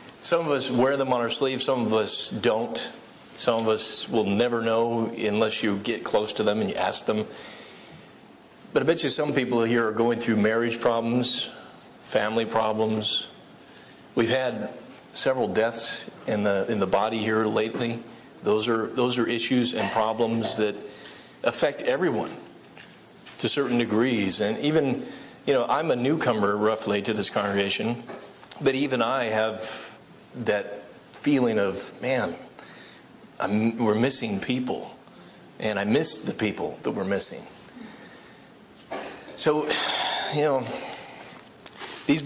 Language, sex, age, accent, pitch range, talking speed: English, male, 40-59, American, 110-130 Hz, 145 wpm